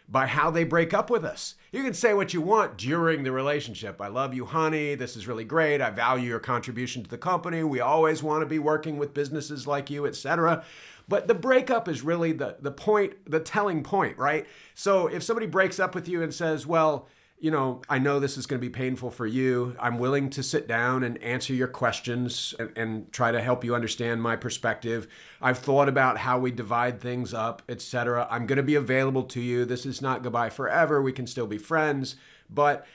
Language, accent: English, American